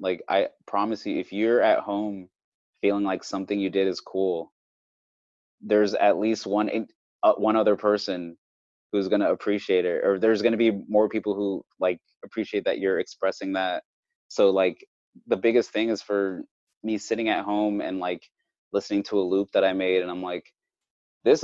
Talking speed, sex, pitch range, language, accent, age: 180 wpm, male, 95-105 Hz, English, American, 20-39